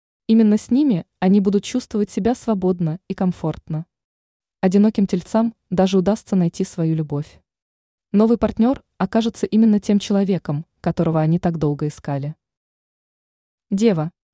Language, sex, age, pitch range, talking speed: Russian, female, 20-39, 170-215 Hz, 120 wpm